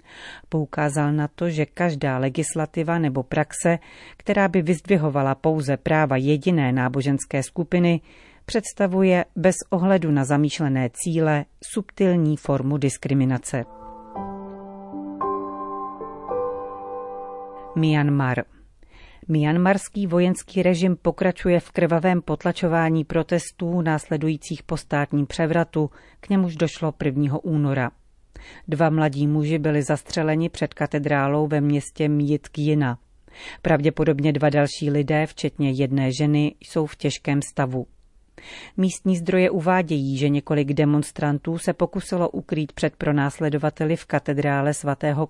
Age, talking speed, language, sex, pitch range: 40-59, 105 wpm, Czech, female, 145-175 Hz